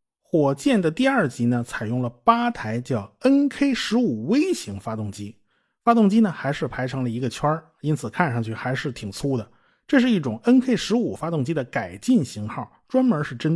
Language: Chinese